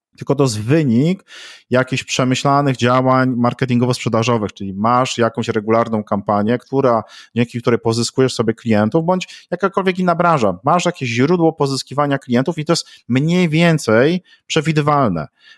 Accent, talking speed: native, 130 wpm